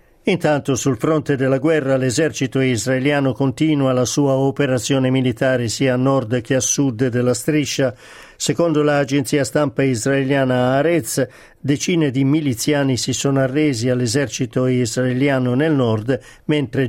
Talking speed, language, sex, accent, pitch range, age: 130 wpm, Italian, male, native, 125-150 Hz, 50-69